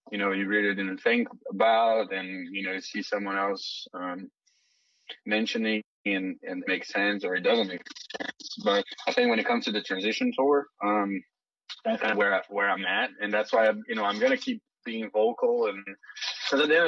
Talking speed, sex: 215 wpm, male